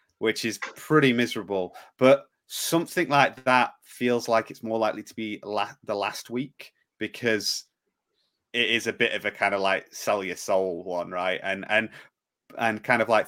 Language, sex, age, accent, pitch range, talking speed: English, male, 30-49, British, 100-120 Hz, 180 wpm